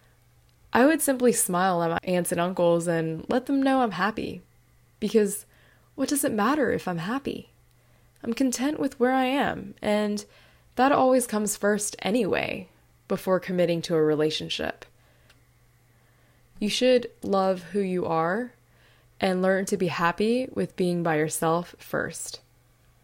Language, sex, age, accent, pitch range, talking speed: English, female, 20-39, American, 150-200 Hz, 145 wpm